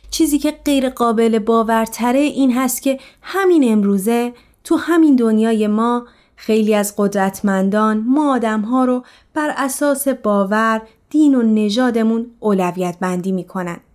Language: Persian